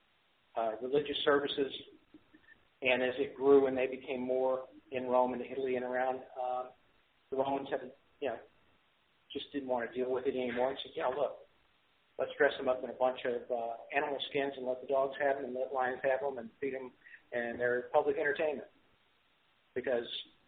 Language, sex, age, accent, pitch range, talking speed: English, male, 50-69, American, 125-145 Hz, 180 wpm